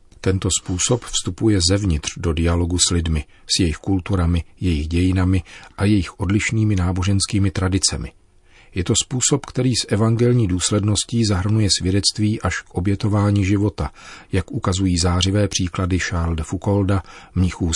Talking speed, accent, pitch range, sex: 130 wpm, native, 90-105 Hz, male